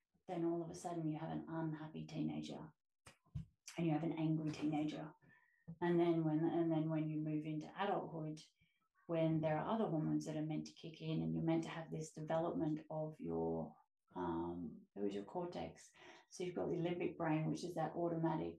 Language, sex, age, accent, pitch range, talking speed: English, female, 30-49, Australian, 155-180 Hz, 190 wpm